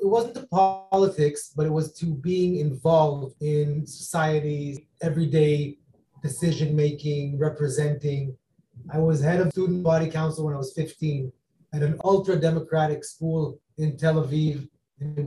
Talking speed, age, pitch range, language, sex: 135 wpm, 30-49, 145-170 Hz, English, male